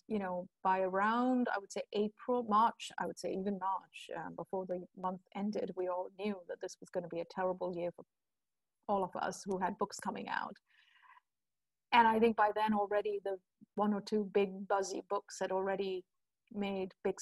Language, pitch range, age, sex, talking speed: English, 190-225 Hz, 30-49, female, 200 wpm